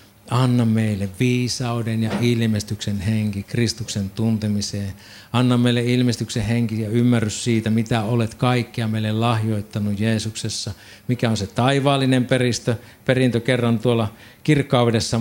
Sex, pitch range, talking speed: male, 105-125 Hz, 120 wpm